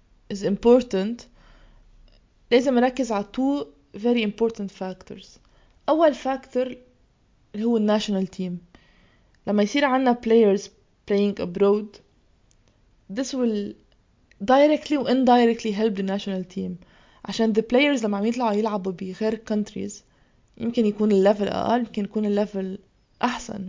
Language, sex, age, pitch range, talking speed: Arabic, female, 20-39, 200-230 Hz, 135 wpm